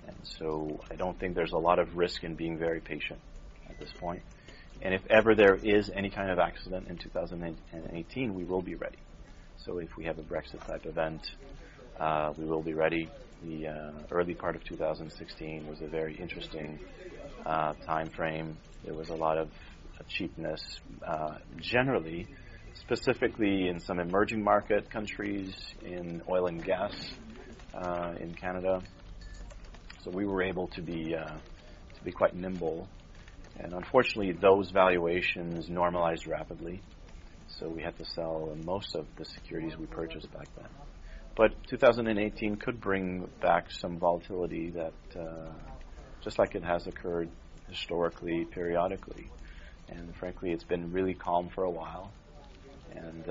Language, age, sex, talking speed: English, 30-49, male, 150 wpm